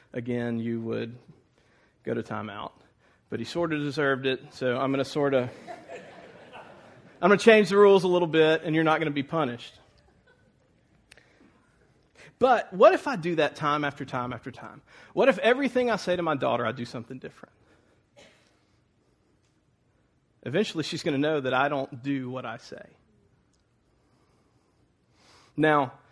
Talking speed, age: 175 wpm, 40-59